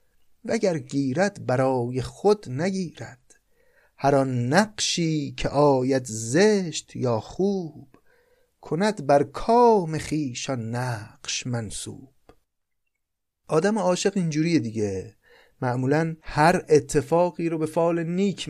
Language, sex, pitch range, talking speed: Persian, male, 115-155 Hz, 100 wpm